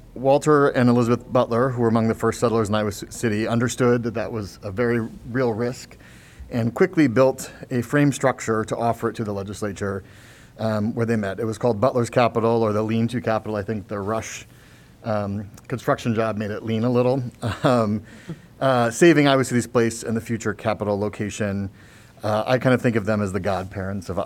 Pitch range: 105-125 Hz